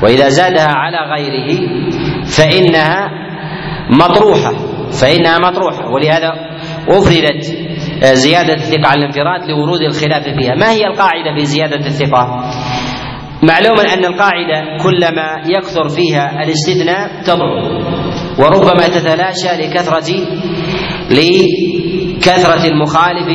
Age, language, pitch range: 40-59, Arabic, 145-180 Hz